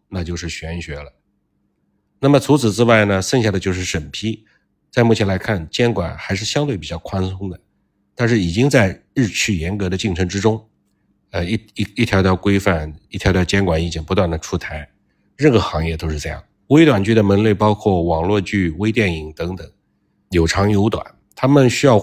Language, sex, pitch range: Chinese, male, 85-110 Hz